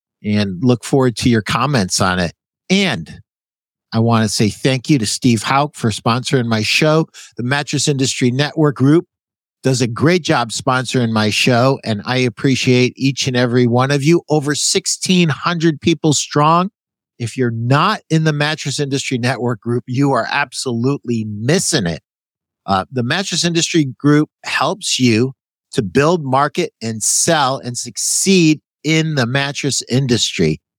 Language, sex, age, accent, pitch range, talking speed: English, male, 50-69, American, 125-170 Hz, 155 wpm